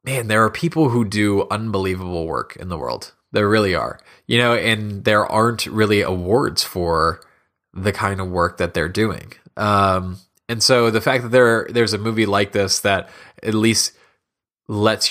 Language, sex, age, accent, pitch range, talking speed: English, male, 20-39, American, 90-105 Hz, 180 wpm